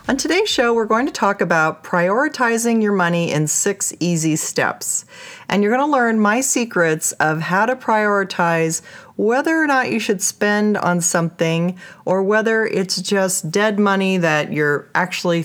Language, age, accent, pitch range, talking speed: English, 40-59, American, 170-230 Hz, 165 wpm